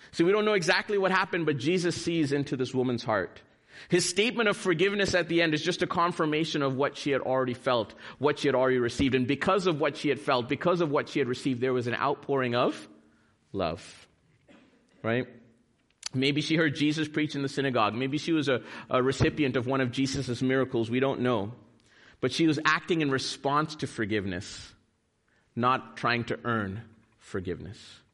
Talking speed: 195 wpm